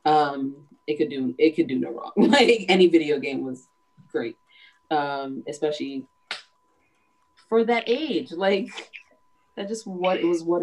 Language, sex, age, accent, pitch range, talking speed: English, female, 20-39, American, 155-245 Hz, 150 wpm